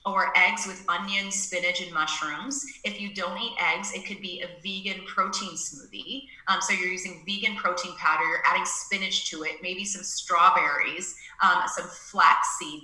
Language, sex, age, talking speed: English, female, 30-49, 175 wpm